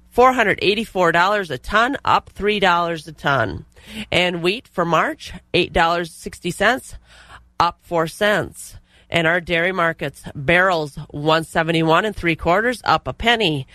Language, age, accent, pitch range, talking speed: English, 30-49, American, 160-205 Hz, 155 wpm